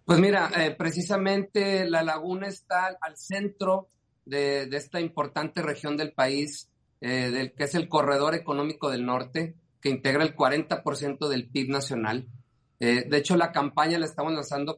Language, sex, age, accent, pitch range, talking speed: Spanish, male, 40-59, Mexican, 140-180 Hz, 160 wpm